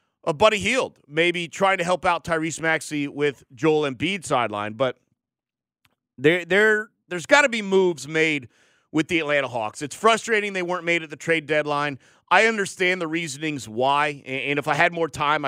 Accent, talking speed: American, 180 wpm